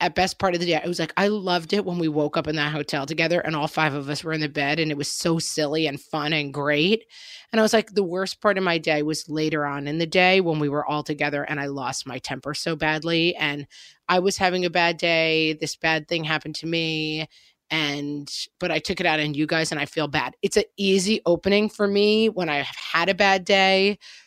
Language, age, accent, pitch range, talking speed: English, 30-49, American, 155-195 Hz, 255 wpm